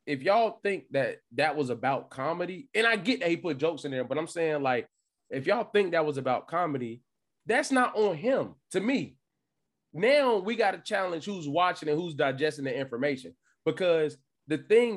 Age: 20-39